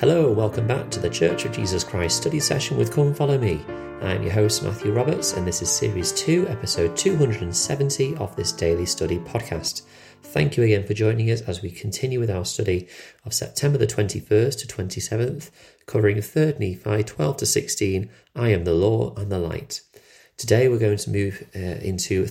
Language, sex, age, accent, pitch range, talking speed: English, male, 30-49, British, 85-110 Hz, 190 wpm